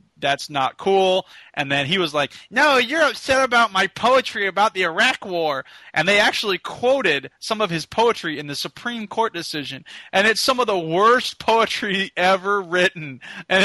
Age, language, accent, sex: 20-39, English, American, male